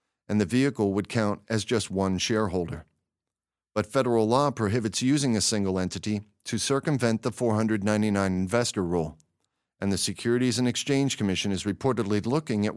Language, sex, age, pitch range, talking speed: English, male, 40-59, 100-125 Hz, 155 wpm